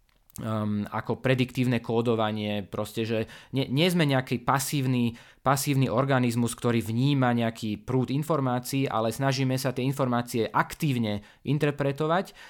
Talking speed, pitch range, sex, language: 120 wpm, 115-140 Hz, male, Slovak